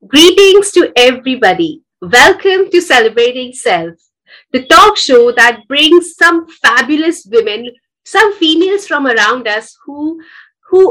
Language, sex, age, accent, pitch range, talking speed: English, female, 30-49, Indian, 240-345 Hz, 120 wpm